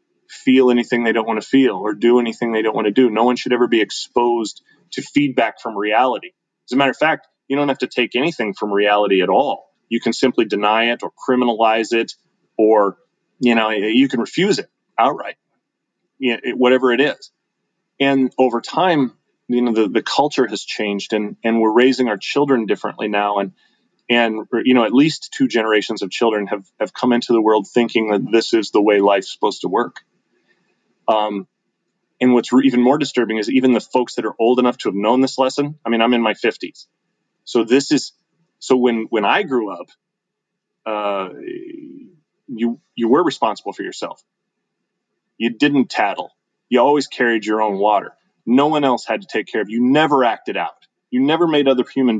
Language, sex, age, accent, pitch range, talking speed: English, male, 30-49, American, 110-135 Hz, 195 wpm